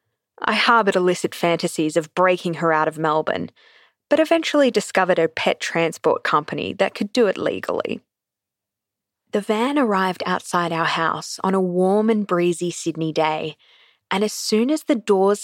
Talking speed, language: 160 wpm, English